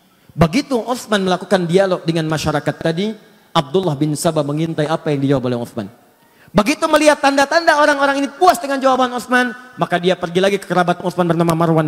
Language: Indonesian